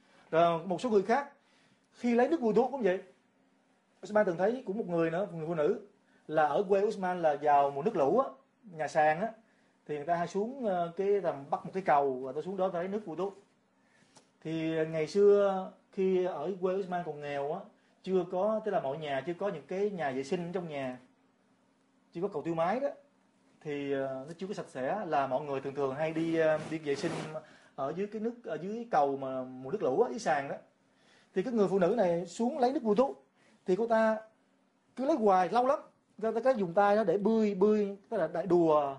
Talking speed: 230 wpm